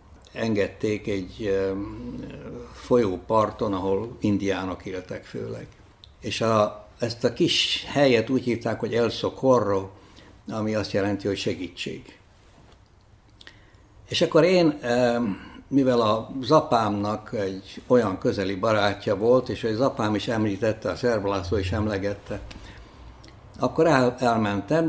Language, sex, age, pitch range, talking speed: Hungarian, male, 60-79, 100-120 Hz, 110 wpm